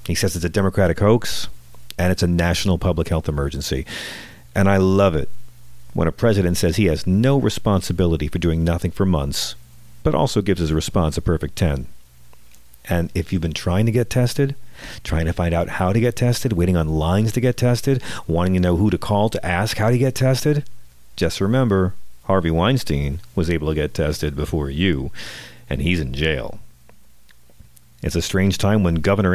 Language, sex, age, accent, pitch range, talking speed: English, male, 40-59, American, 75-110 Hz, 190 wpm